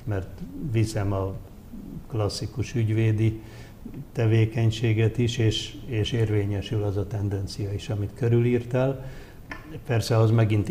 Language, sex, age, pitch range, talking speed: Hungarian, male, 60-79, 100-115 Hz, 105 wpm